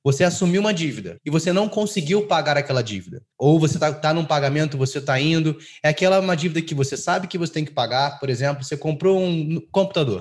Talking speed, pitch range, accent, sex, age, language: 225 wpm, 135-170 Hz, Brazilian, male, 20-39, Portuguese